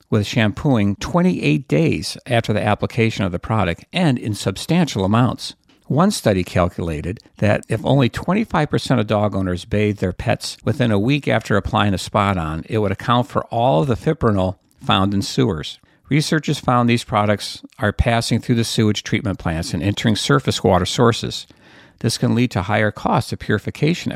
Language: English